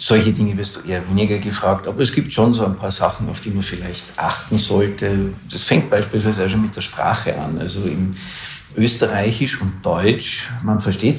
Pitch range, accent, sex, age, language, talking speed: 95-110 Hz, Austrian, male, 50-69, German, 200 wpm